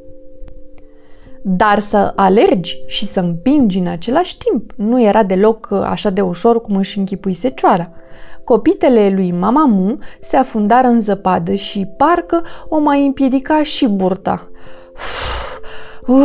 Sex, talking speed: female, 125 wpm